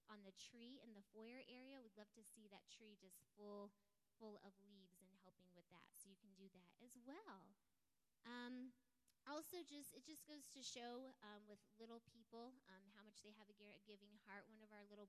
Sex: female